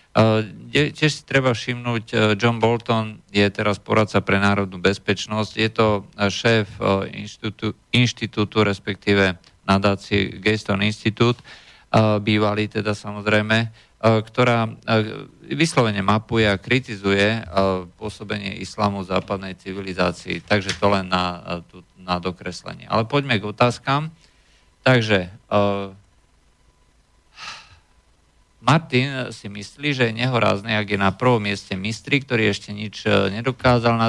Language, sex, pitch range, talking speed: Slovak, male, 100-115 Hz, 125 wpm